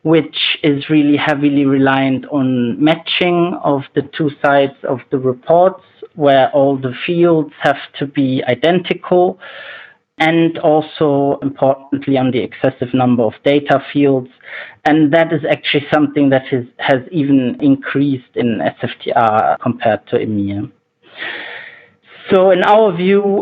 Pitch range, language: 135-160 Hz, English